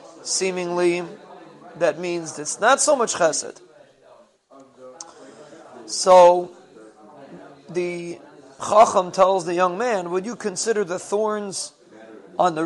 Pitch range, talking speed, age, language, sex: 165-195 Hz, 105 wpm, 40-59, English, male